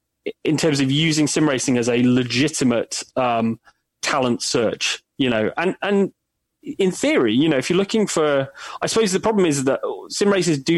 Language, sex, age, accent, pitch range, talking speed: English, male, 20-39, British, 130-165 Hz, 185 wpm